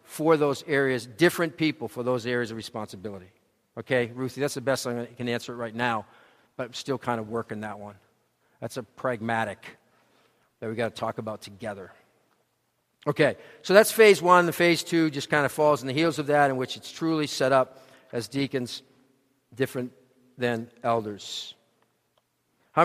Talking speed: 180 wpm